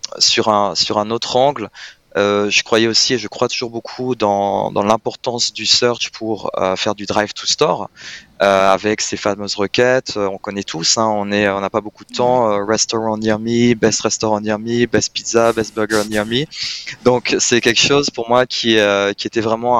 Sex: male